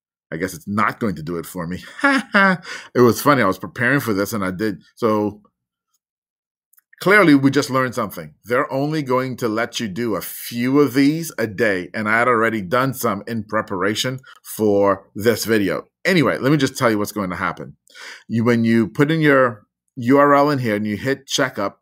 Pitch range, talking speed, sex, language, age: 105-135 Hz, 200 wpm, male, English, 30-49